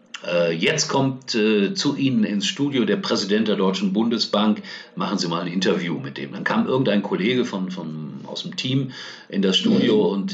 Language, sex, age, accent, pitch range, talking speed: German, male, 50-69, German, 90-140 Hz, 185 wpm